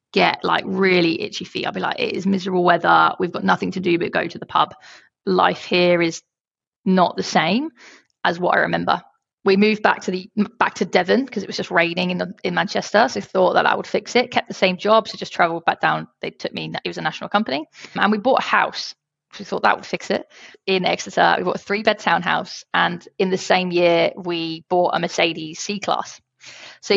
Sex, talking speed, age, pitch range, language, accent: female, 230 wpm, 20-39, 175-210 Hz, English, British